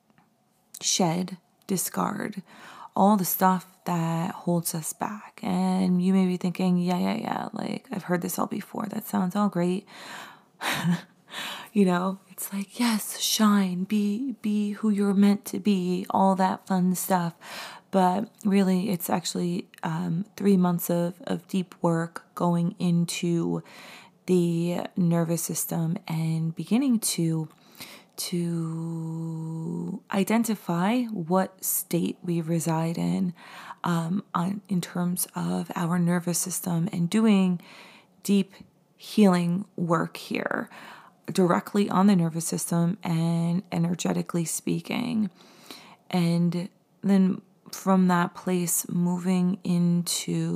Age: 20-39